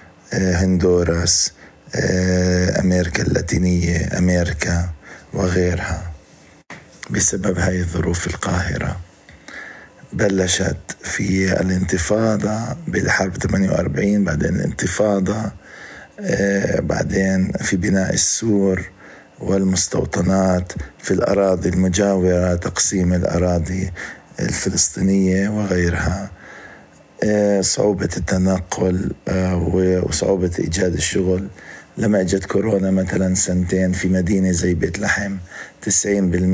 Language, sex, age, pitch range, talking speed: Arabic, male, 50-69, 90-95 Hz, 75 wpm